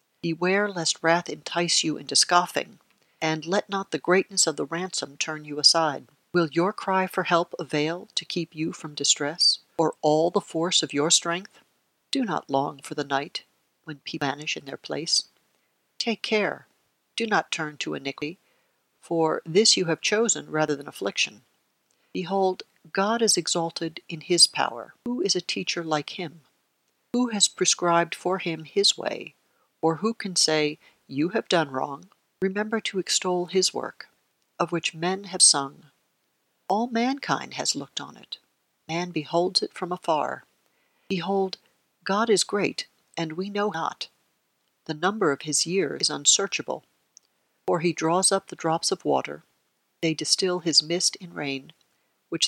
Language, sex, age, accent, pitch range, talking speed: English, female, 60-79, American, 160-190 Hz, 160 wpm